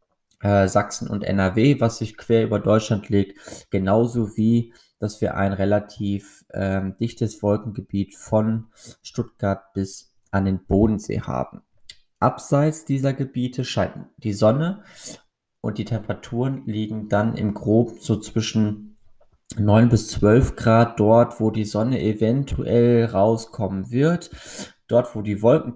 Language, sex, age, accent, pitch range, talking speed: German, male, 20-39, German, 100-120 Hz, 130 wpm